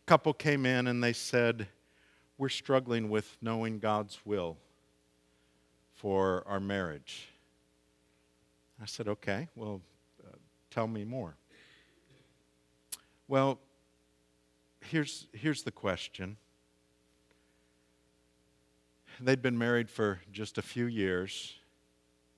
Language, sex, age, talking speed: English, male, 50-69, 95 wpm